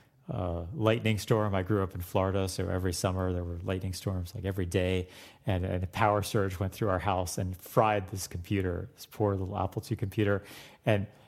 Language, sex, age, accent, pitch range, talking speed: English, male, 30-49, American, 95-110 Hz, 205 wpm